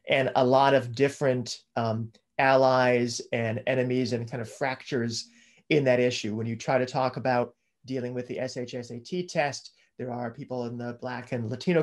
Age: 30-49